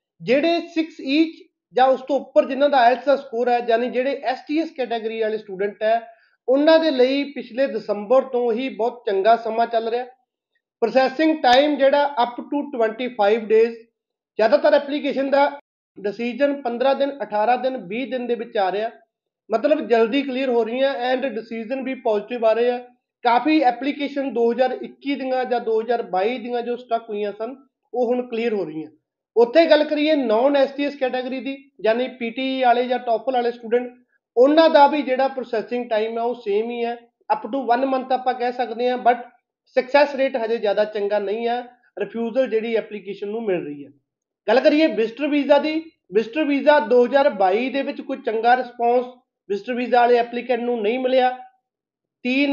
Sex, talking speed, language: male, 170 wpm, Punjabi